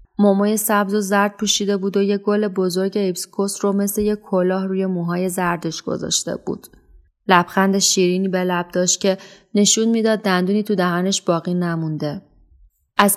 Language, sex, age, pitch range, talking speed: Persian, female, 20-39, 175-210 Hz, 155 wpm